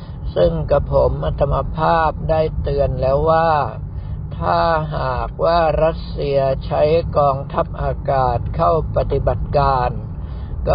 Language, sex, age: Thai, male, 60-79